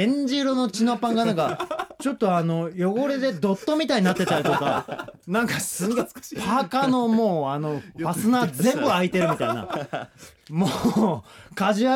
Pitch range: 130-220 Hz